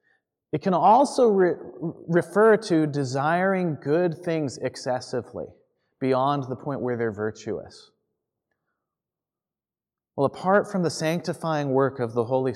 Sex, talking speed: male, 115 wpm